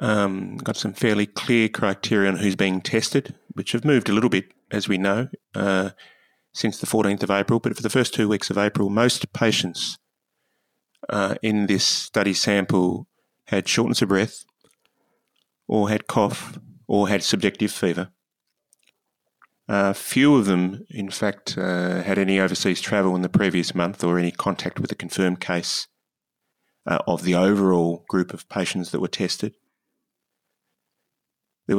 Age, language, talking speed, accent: 30-49, English, 160 wpm, Australian